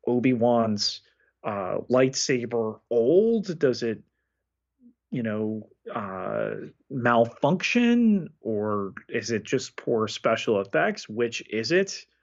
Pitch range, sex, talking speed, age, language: 105-130 Hz, male, 100 wpm, 30-49, English